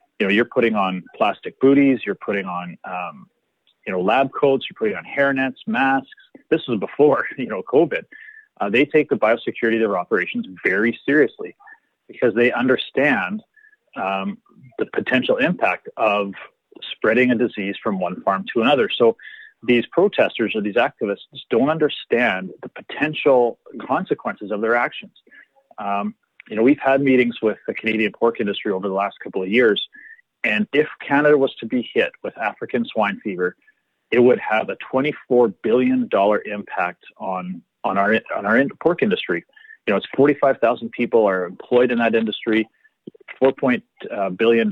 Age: 30-49